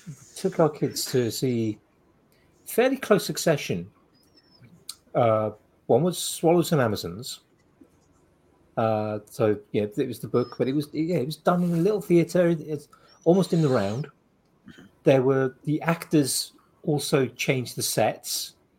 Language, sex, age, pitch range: English, male, 40-59, 120-160 Hz